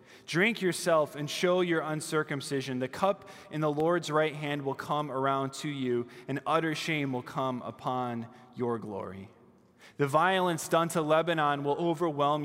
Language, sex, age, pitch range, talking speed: English, male, 20-39, 140-175 Hz, 160 wpm